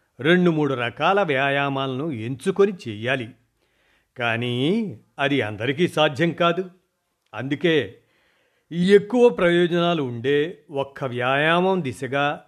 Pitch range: 130-170 Hz